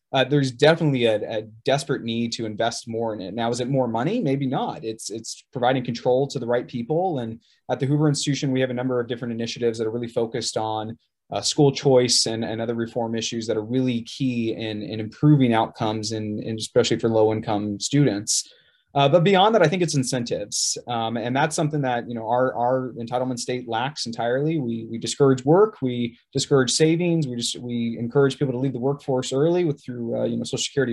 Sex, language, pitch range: male, English, 115-145 Hz